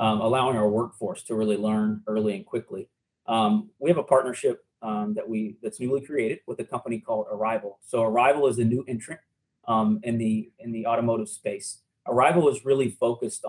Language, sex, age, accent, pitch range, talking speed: English, male, 30-49, American, 110-125 Hz, 190 wpm